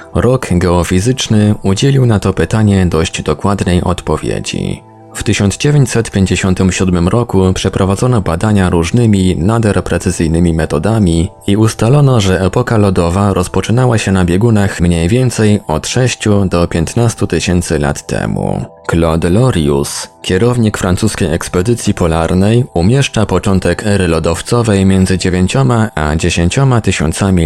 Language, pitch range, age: Polish, 85-110 Hz, 20-39